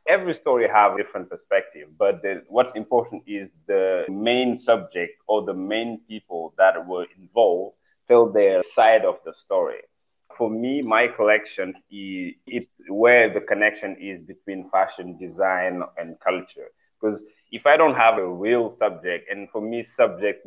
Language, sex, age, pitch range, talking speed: English, male, 30-49, 95-130 Hz, 155 wpm